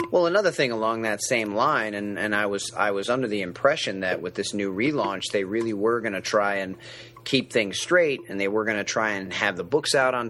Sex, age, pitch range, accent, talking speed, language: male, 30-49, 105-130 Hz, American, 250 wpm, English